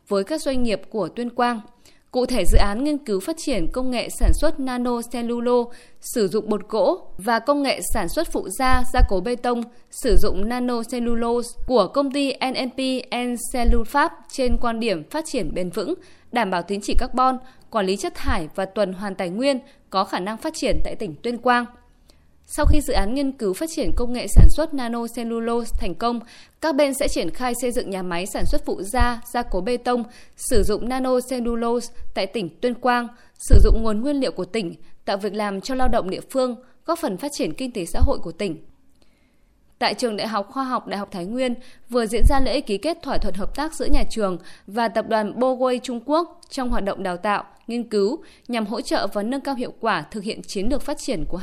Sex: female